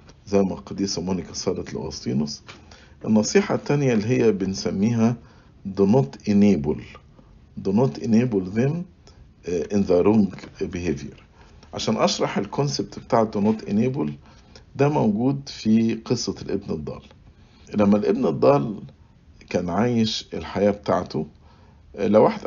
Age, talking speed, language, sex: 50-69, 115 wpm, English, male